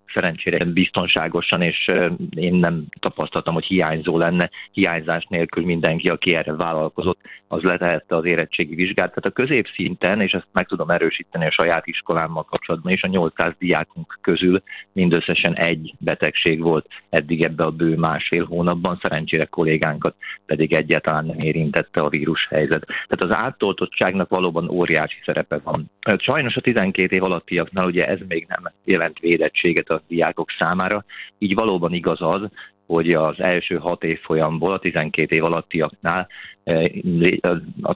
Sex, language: male, Hungarian